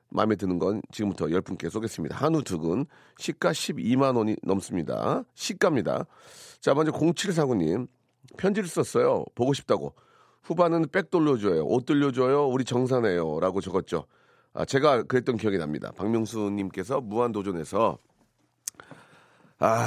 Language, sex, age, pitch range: Korean, male, 40-59, 105-135 Hz